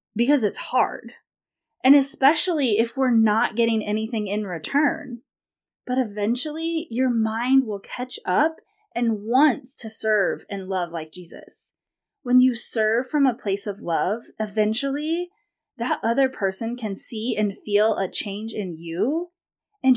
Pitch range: 205-260 Hz